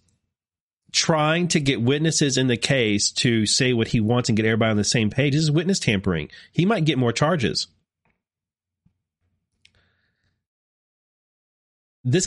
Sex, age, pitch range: male, 30-49, 105-145 Hz